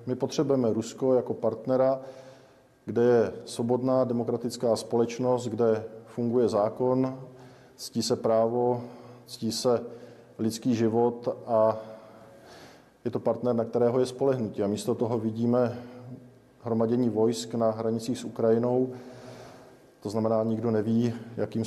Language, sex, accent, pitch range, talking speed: Czech, male, native, 110-125 Hz, 120 wpm